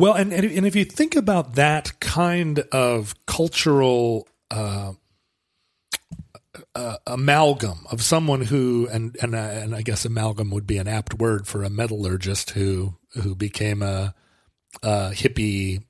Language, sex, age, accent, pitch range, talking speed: English, male, 40-59, American, 105-135 Hz, 145 wpm